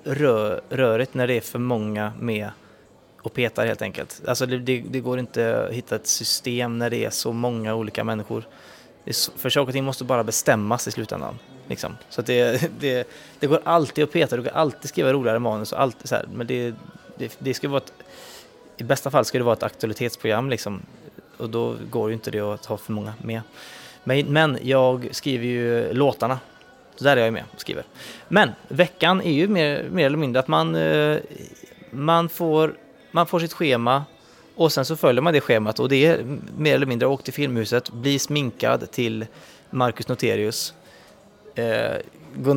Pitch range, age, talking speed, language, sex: 115-140 Hz, 20-39, 190 wpm, English, male